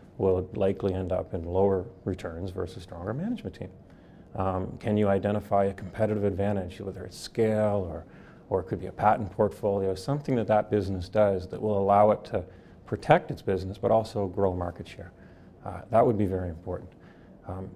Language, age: English, 30-49